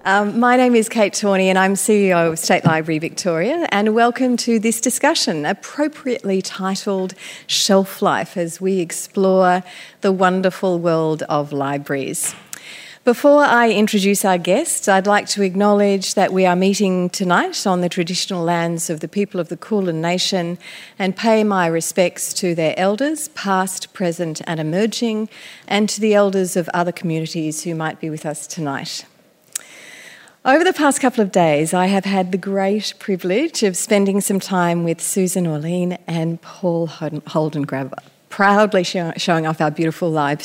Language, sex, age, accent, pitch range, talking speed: English, female, 40-59, Australian, 165-205 Hz, 160 wpm